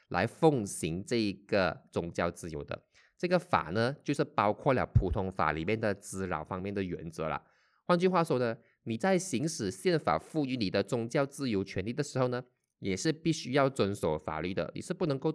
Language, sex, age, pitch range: Chinese, male, 20-39, 95-135 Hz